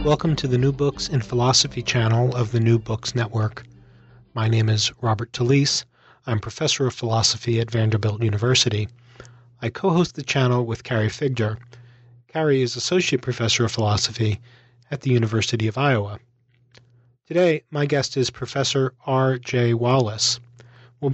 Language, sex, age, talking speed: English, male, 40-59, 145 wpm